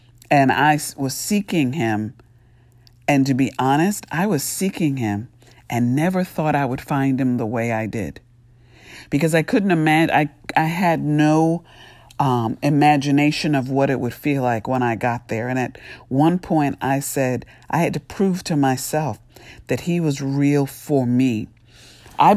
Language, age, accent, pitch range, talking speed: English, 50-69, American, 120-150 Hz, 170 wpm